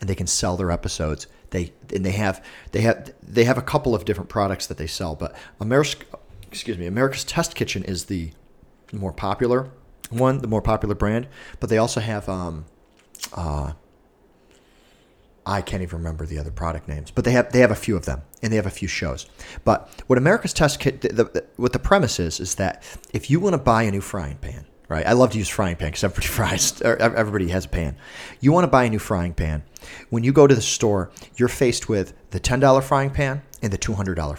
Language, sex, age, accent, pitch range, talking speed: English, male, 40-59, American, 85-120 Hz, 220 wpm